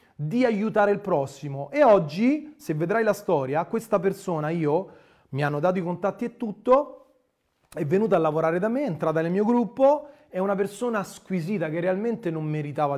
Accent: native